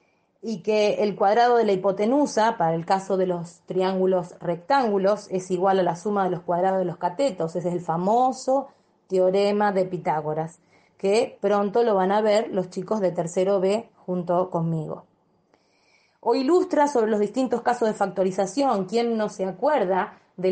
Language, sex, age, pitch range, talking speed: Spanish, female, 20-39, 185-235 Hz, 170 wpm